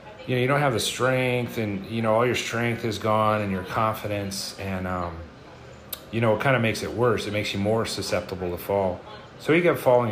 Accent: American